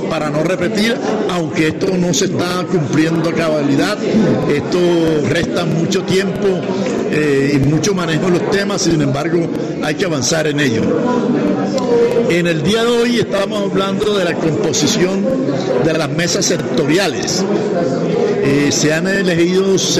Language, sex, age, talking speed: Spanish, male, 60-79, 145 wpm